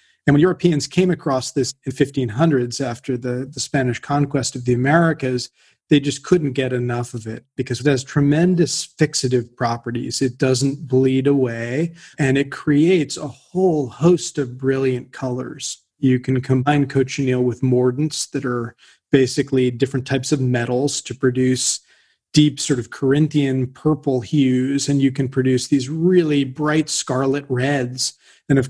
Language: English